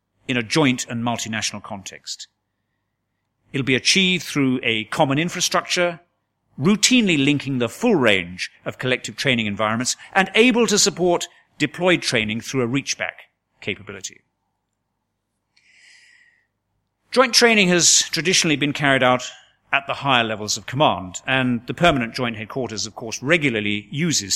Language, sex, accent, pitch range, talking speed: English, male, British, 110-175 Hz, 135 wpm